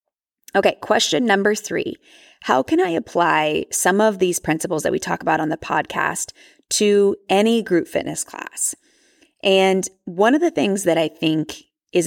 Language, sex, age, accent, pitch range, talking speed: English, female, 20-39, American, 160-205 Hz, 165 wpm